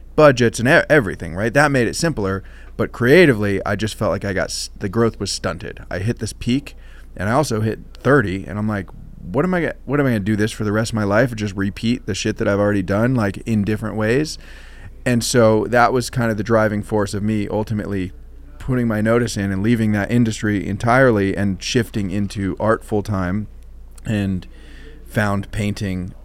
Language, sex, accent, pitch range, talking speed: English, male, American, 100-125 Hz, 200 wpm